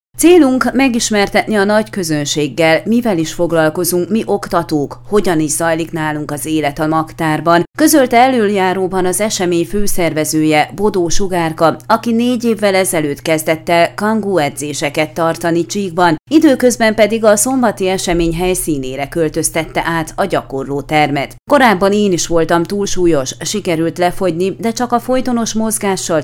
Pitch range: 160-215 Hz